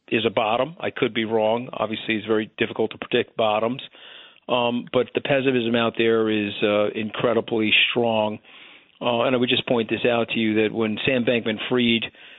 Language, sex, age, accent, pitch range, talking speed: English, male, 50-69, American, 110-120 Hz, 185 wpm